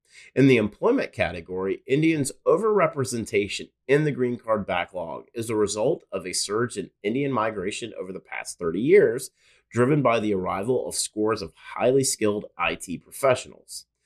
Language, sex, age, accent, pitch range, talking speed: English, male, 30-49, American, 100-135 Hz, 155 wpm